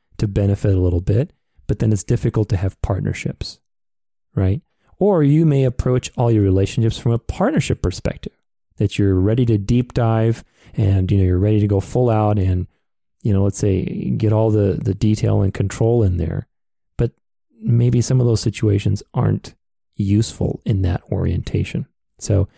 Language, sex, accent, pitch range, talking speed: English, male, American, 100-120 Hz, 175 wpm